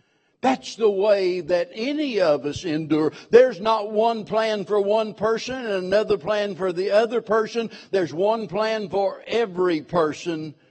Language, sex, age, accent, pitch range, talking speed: English, male, 60-79, American, 170-215 Hz, 155 wpm